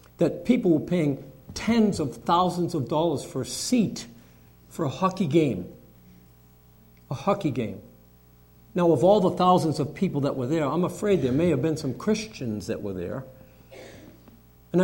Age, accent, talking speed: 50-69, American, 165 wpm